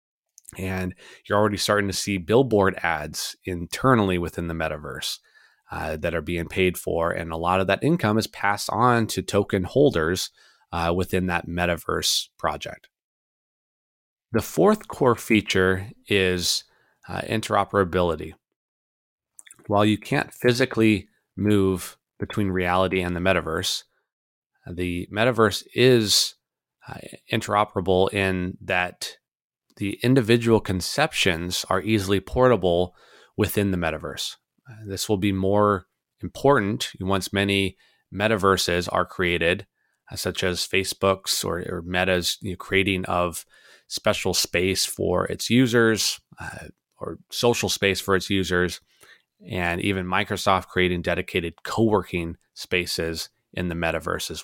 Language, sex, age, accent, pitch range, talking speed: English, male, 30-49, American, 90-105 Hz, 120 wpm